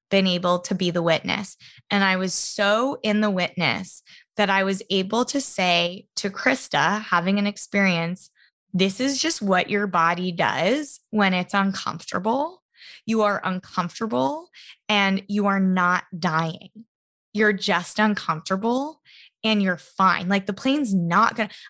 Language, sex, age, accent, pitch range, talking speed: English, female, 20-39, American, 185-225 Hz, 145 wpm